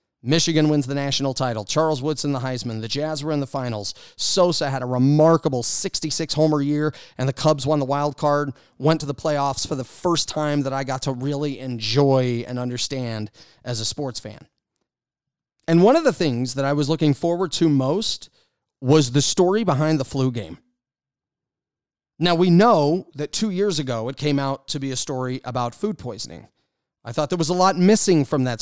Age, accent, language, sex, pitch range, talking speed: 30-49, American, English, male, 125-155 Hz, 195 wpm